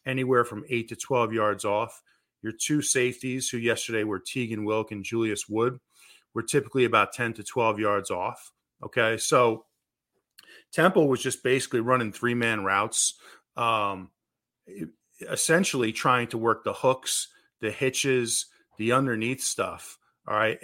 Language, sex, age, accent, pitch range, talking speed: English, male, 40-59, American, 110-135 Hz, 145 wpm